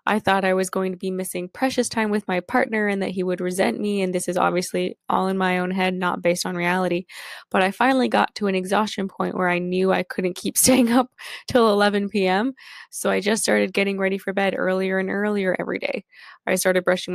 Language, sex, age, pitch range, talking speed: English, female, 10-29, 180-210 Hz, 235 wpm